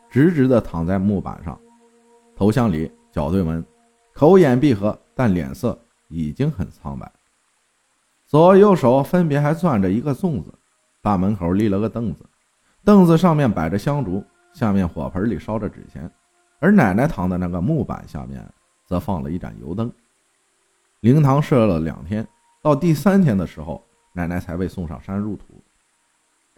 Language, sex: Chinese, male